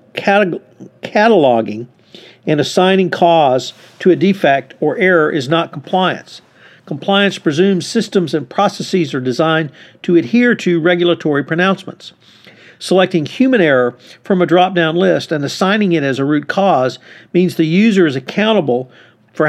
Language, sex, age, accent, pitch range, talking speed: English, male, 50-69, American, 145-185 Hz, 135 wpm